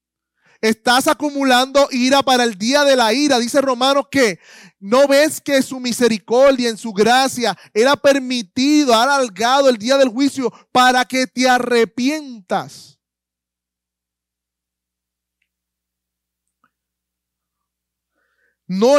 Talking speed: 105 wpm